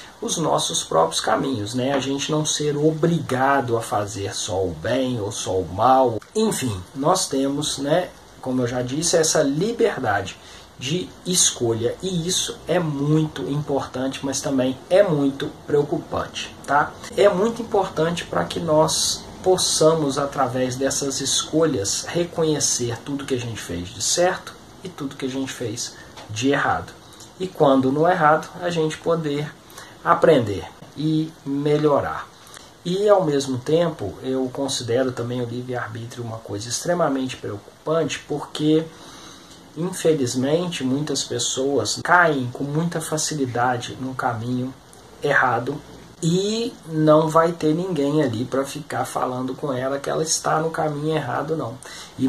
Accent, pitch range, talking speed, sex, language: Brazilian, 125-160 Hz, 140 wpm, male, Portuguese